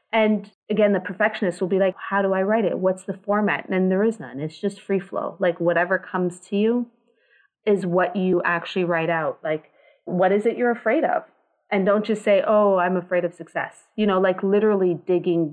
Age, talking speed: 30-49, 215 wpm